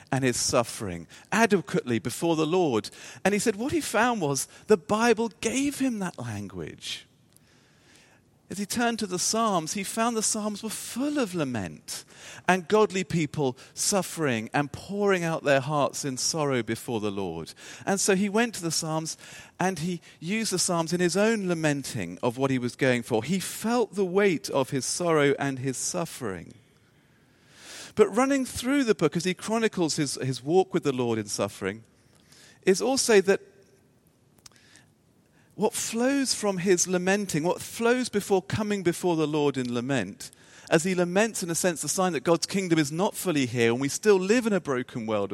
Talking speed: 180 wpm